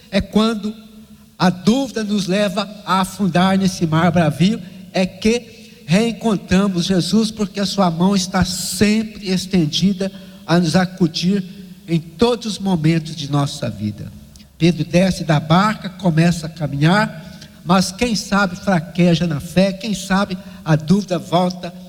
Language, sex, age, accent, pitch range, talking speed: Portuguese, male, 60-79, Brazilian, 170-205 Hz, 135 wpm